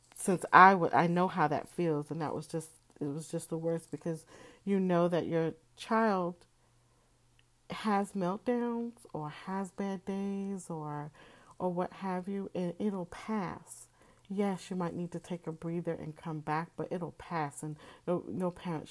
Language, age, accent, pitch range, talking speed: English, 40-59, American, 155-185 Hz, 175 wpm